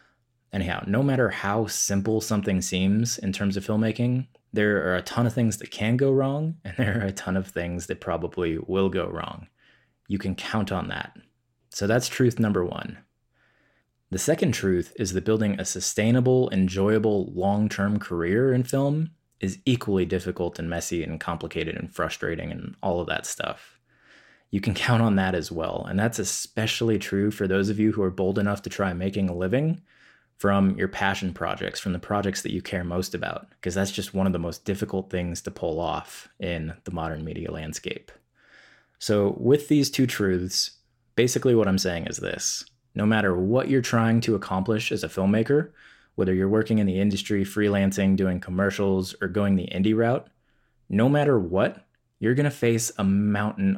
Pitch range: 95-115 Hz